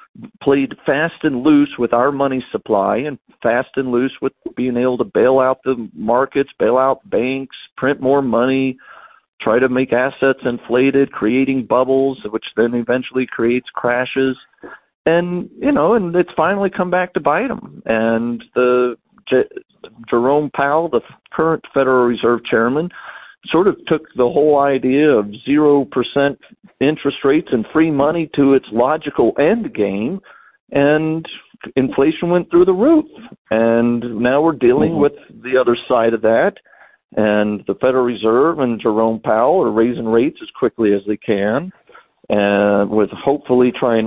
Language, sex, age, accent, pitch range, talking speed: English, male, 50-69, American, 115-150 Hz, 150 wpm